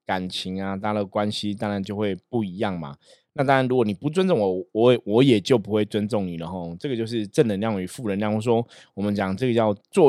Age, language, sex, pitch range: 20-39, Chinese, male, 105-130 Hz